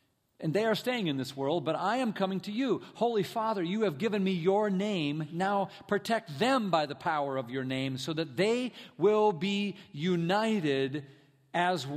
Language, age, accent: English, 50-69, American